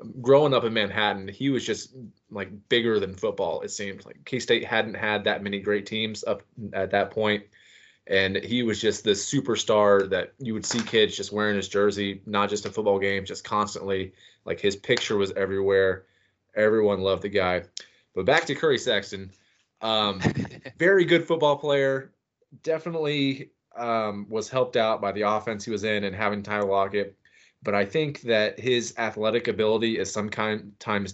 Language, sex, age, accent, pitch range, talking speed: English, male, 20-39, American, 95-110 Hz, 175 wpm